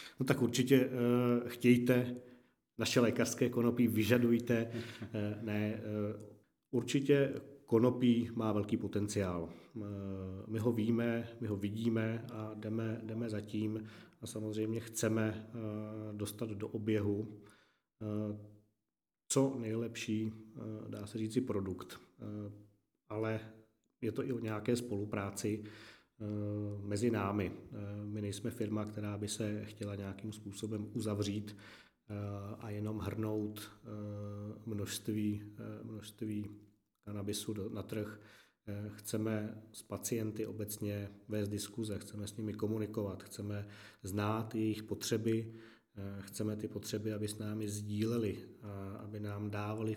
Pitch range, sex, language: 105-110 Hz, male, Czech